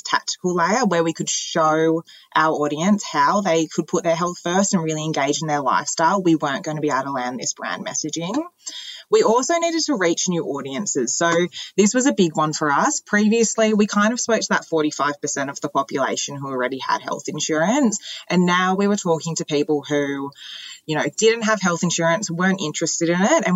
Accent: Australian